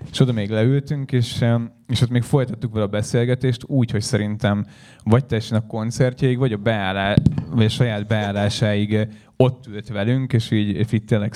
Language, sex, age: Hungarian, male, 10-29